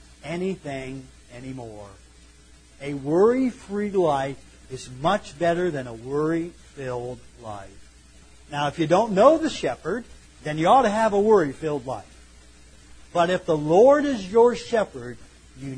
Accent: American